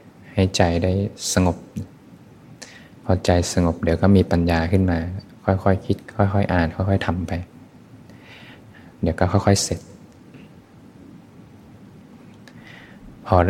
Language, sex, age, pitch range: Thai, male, 20-39, 85-95 Hz